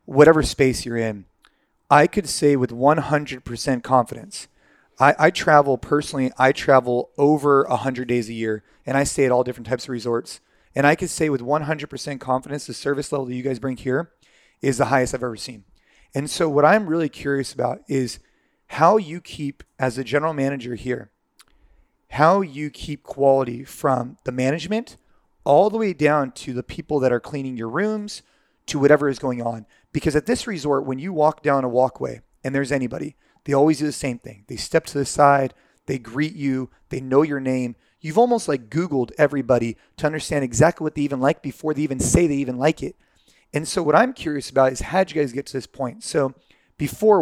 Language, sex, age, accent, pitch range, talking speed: English, male, 30-49, American, 130-150 Hz, 200 wpm